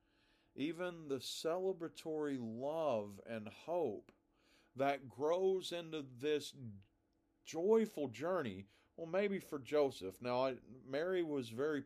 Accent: American